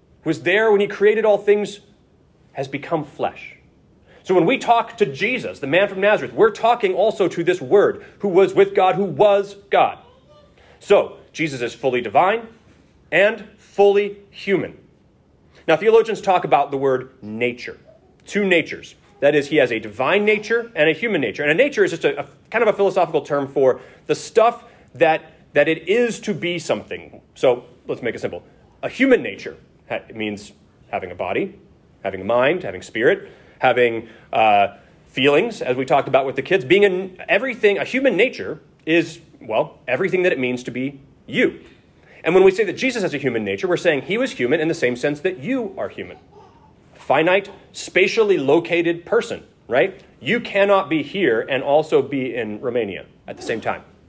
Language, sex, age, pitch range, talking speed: English, male, 30-49, 140-210 Hz, 185 wpm